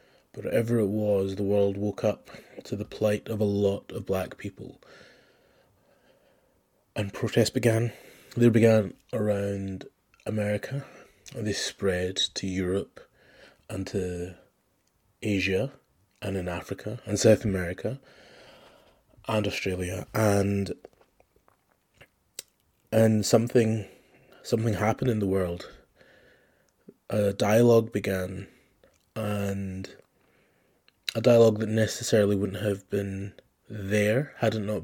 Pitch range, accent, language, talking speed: 100-110 Hz, British, English, 105 wpm